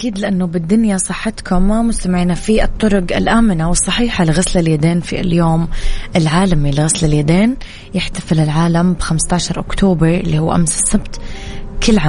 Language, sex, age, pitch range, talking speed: Arabic, female, 20-39, 160-185 Hz, 130 wpm